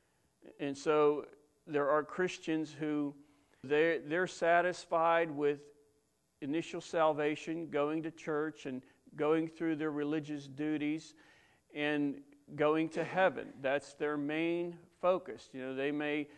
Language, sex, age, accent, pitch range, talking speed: English, male, 50-69, American, 145-165 Hz, 120 wpm